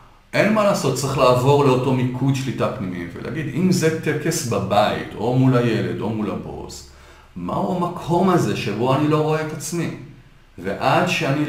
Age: 40-59